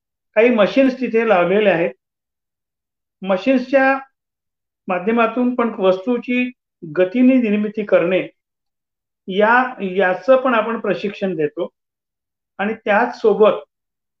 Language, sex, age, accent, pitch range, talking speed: Marathi, male, 50-69, native, 195-240 Hz, 40 wpm